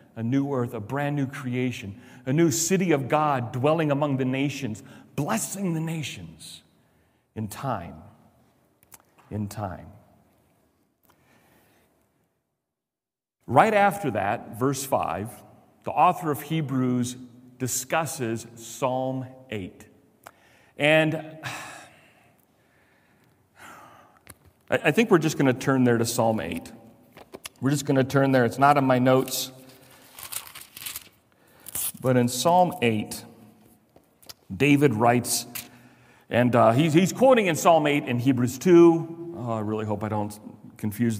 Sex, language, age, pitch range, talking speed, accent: male, English, 40-59, 120-160 Hz, 120 wpm, American